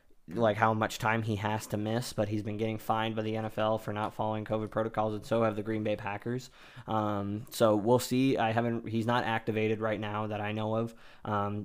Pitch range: 110-115 Hz